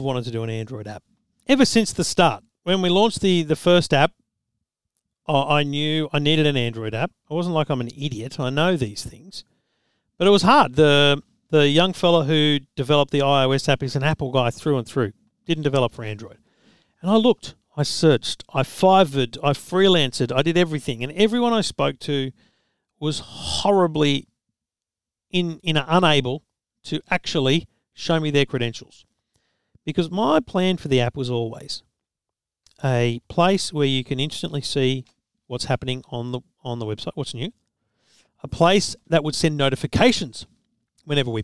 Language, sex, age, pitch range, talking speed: English, male, 50-69, 125-165 Hz, 170 wpm